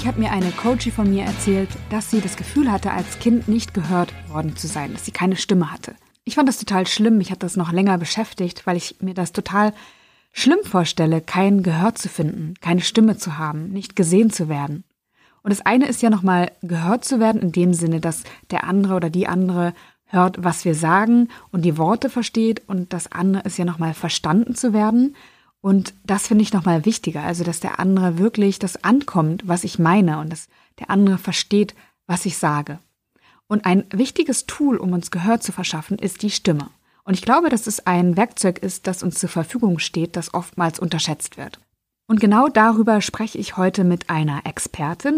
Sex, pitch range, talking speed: female, 175-220 Hz, 200 wpm